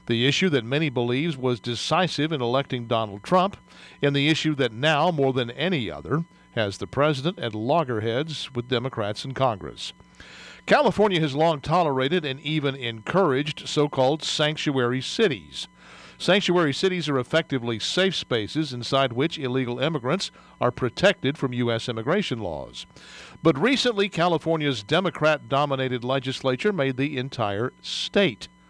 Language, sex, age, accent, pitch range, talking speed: English, male, 50-69, American, 125-160 Hz, 135 wpm